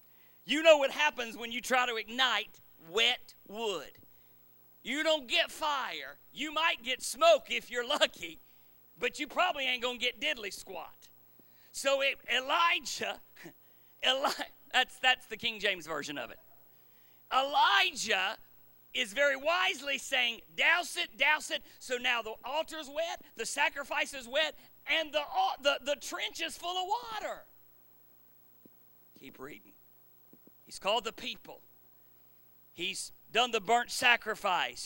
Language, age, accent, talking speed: English, 40-59, American, 135 wpm